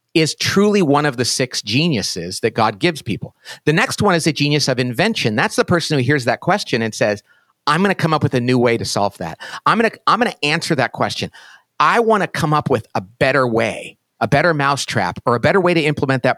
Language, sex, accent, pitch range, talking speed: English, male, American, 130-195 Hz, 240 wpm